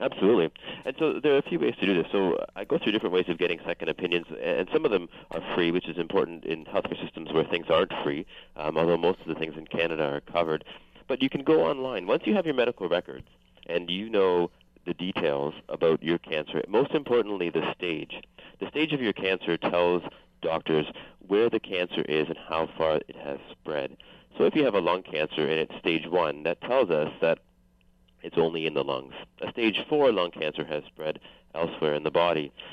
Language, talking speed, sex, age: English, 215 wpm, male, 40-59